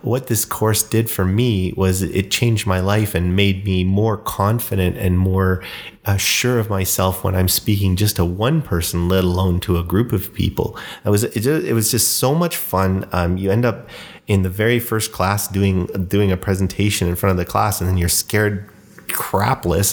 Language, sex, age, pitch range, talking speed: English, male, 30-49, 95-110 Hz, 200 wpm